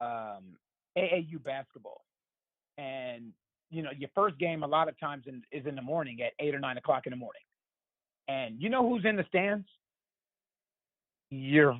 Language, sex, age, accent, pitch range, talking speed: English, male, 40-59, American, 155-205 Hz, 175 wpm